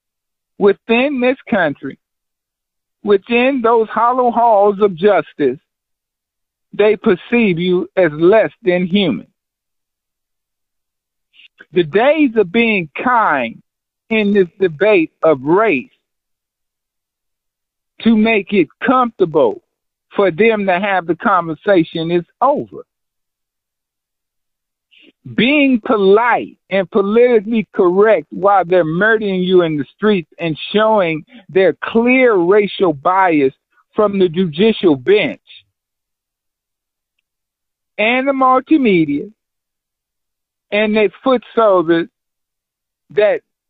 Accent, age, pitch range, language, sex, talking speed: American, 50-69, 175-230 Hz, English, male, 95 wpm